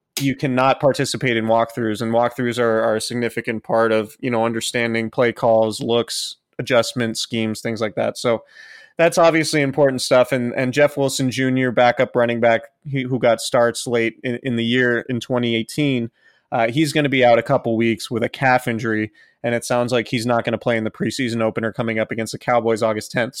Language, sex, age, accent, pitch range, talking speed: English, male, 30-49, American, 115-135 Hz, 210 wpm